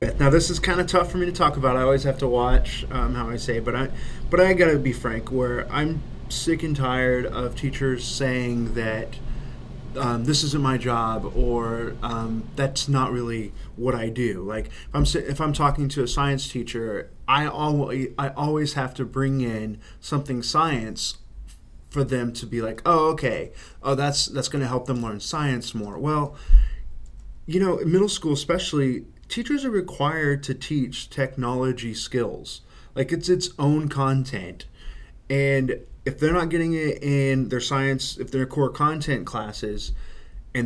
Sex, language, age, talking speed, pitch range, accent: male, English, 20-39, 175 wpm, 120-145 Hz, American